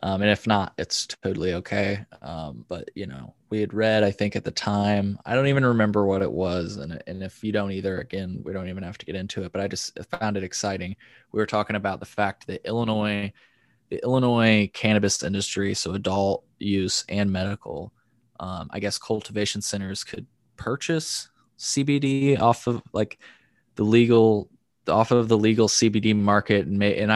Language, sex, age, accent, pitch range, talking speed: English, male, 20-39, American, 100-115 Hz, 190 wpm